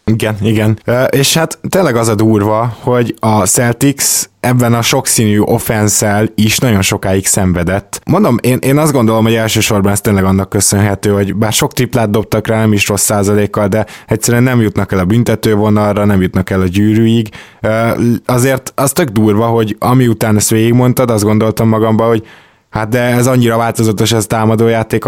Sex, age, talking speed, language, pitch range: male, 20-39, 175 wpm, Hungarian, 100-115 Hz